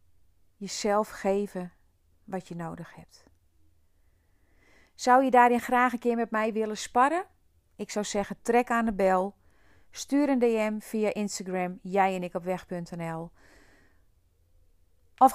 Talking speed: 135 wpm